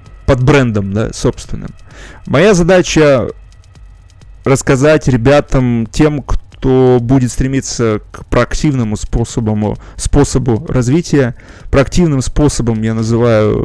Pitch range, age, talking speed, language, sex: 110-140 Hz, 20-39, 90 wpm, Russian, male